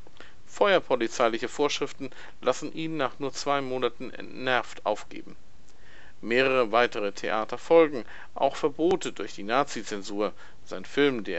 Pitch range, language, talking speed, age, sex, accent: 105-150 Hz, German, 115 wpm, 50-69, male, German